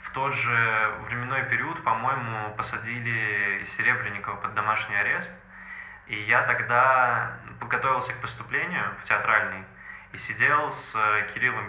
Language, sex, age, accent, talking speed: Russian, male, 20-39, native, 125 wpm